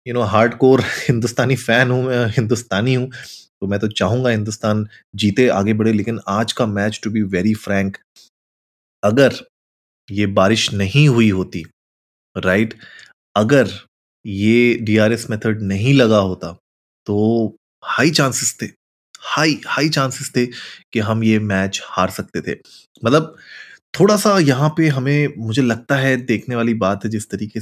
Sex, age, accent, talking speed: male, 20-39, native, 150 wpm